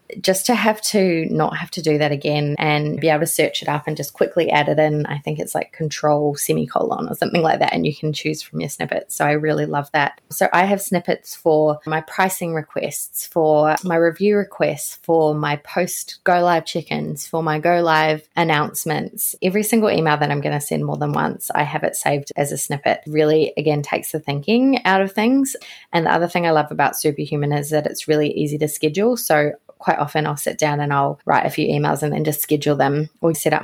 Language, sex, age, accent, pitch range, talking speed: English, female, 20-39, Australian, 150-185 Hz, 230 wpm